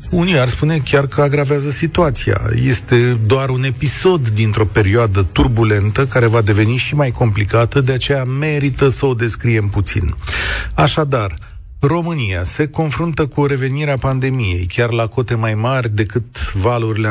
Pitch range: 110-145 Hz